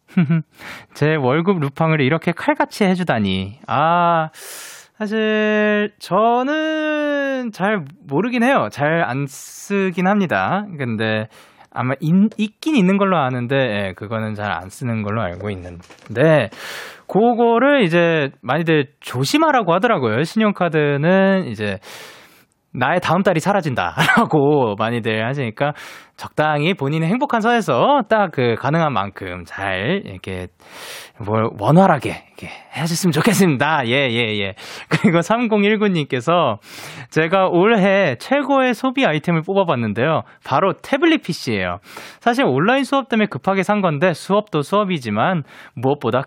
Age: 20-39